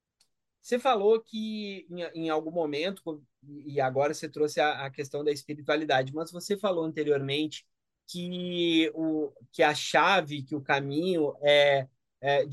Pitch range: 150-195 Hz